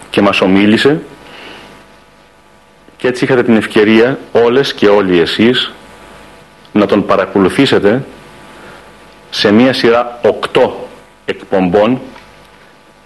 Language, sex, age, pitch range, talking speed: Greek, male, 40-59, 95-125 Hz, 90 wpm